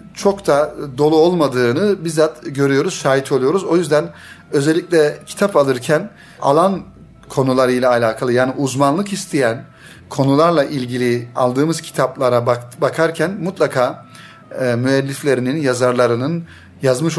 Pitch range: 125-165 Hz